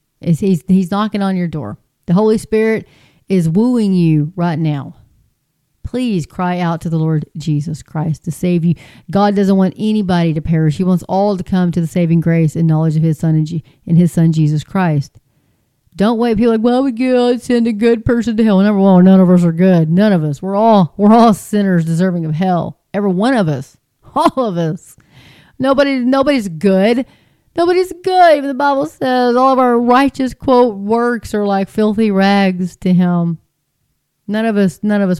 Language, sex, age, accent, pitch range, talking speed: English, female, 40-59, American, 160-210 Hz, 195 wpm